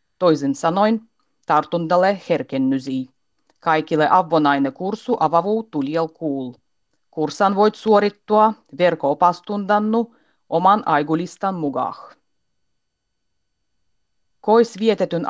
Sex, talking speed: female, 75 wpm